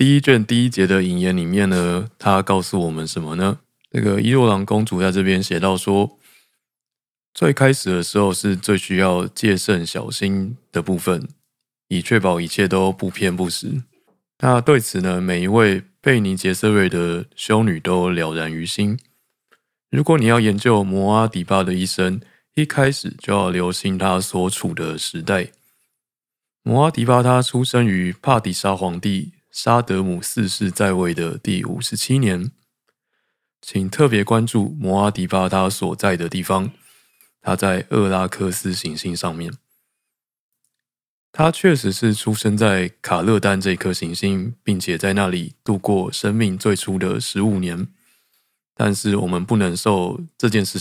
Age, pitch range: 20-39, 90-110 Hz